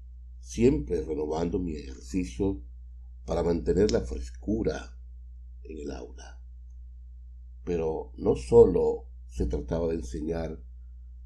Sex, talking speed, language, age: male, 95 wpm, Spanish, 60-79